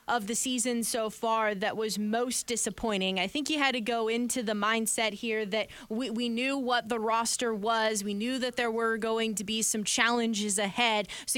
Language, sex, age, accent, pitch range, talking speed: English, female, 20-39, American, 210-245 Hz, 205 wpm